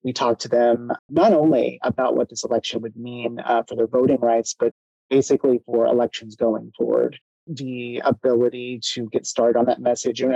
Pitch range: 115-135 Hz